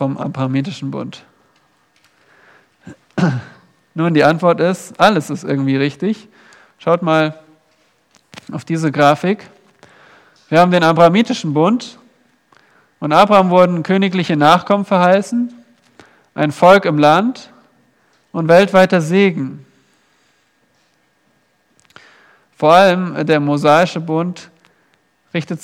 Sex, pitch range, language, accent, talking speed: male, 150-190 Hz, German, German, 95 wpm